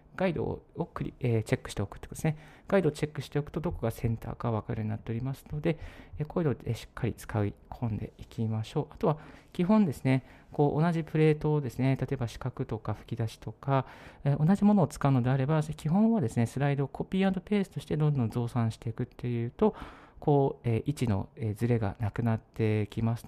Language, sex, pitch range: Japanese, male, 115-150 Hz